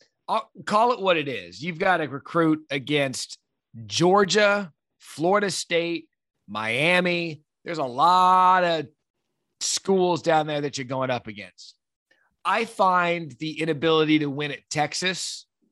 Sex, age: male, 30-49